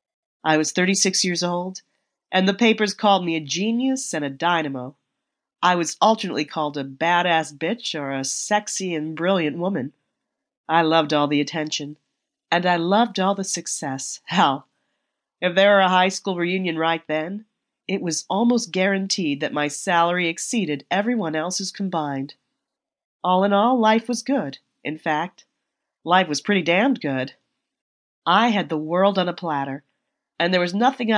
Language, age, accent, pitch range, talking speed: English, 40-59, American, 155-200 Hz, 160 wpm